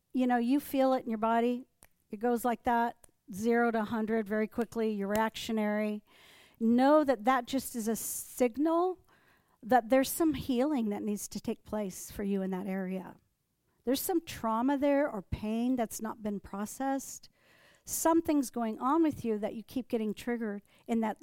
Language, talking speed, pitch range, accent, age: English, 175 wpm, 215-255 Hz, American, 50-69